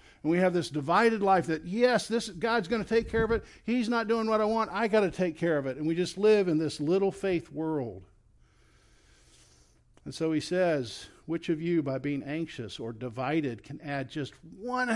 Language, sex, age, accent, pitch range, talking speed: English, male, 50-69, American, 125-190 Hz, 215 wpm